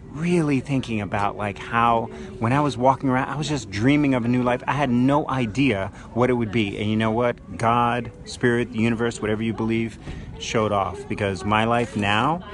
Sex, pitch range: male, 100-120 Hz